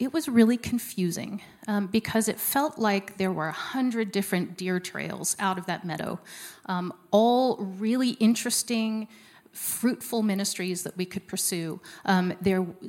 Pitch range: 175-215 Hz